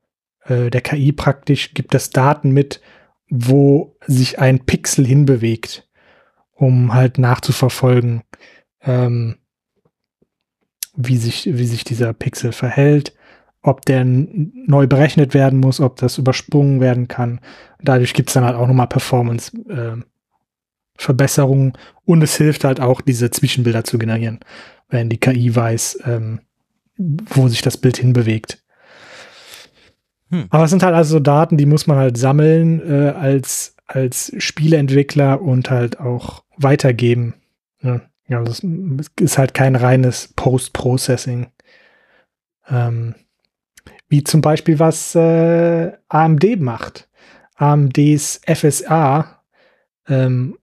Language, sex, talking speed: German, male, 120 wpm